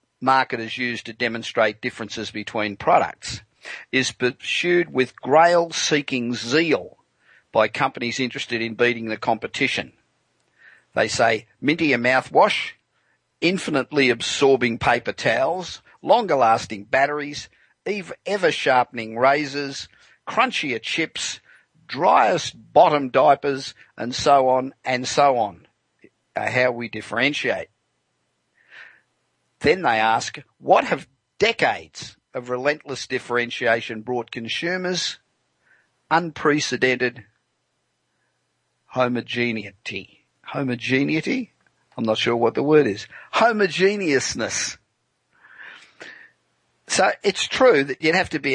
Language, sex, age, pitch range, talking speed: English, male, 50-69, 115-140 Hz, 95 wpm